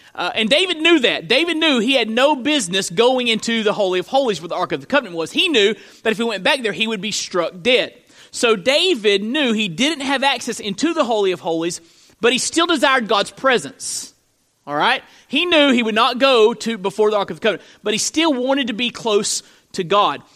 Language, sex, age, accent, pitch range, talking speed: English, male, 30-49, American, 205-270 Hz, 235 wpm